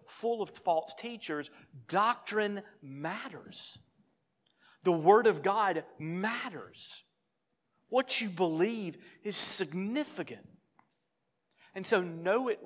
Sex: male